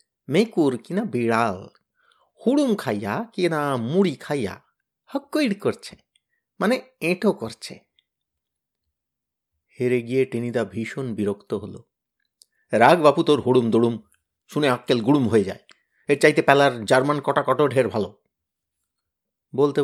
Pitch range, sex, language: 120-160 Hz, male, Bengali